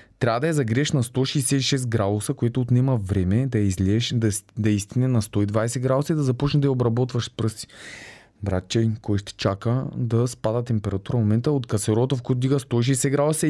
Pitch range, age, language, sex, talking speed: 110-145 Hz, 20-39, Bulgarian, male, 195 wpm